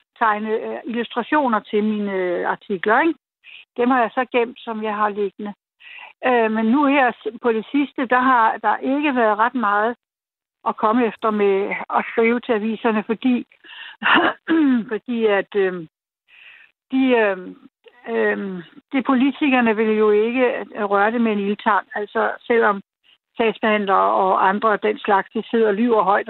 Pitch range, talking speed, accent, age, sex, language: 210-250 Hz, 150 wpm, native, 60-79, female, Danish